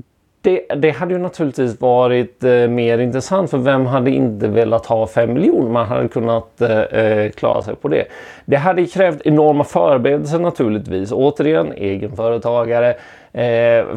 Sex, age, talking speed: male, 30-49, 145 wpm